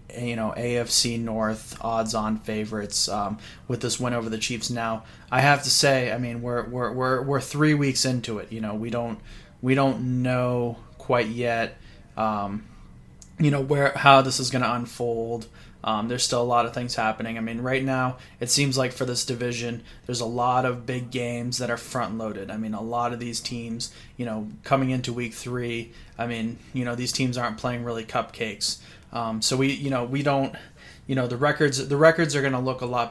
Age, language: 20-39, English